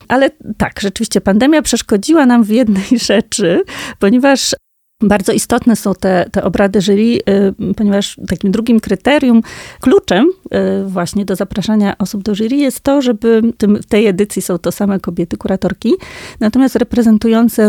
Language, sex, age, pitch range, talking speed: Polish, female, 30-49, 195-230 Hz, 150 wpm